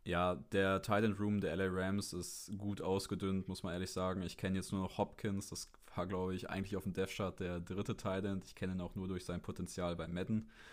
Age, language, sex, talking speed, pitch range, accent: 20-39, German, male, 225 wpm, 90-100 Hz, German